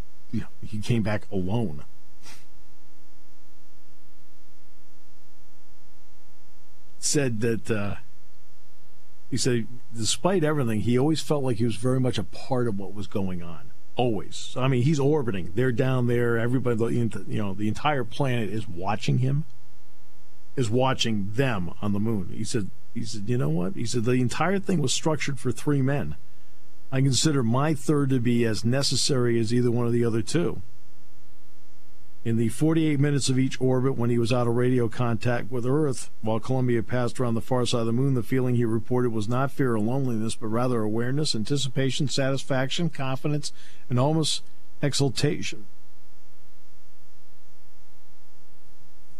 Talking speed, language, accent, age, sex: 150 wpm, English, American, 50-69, male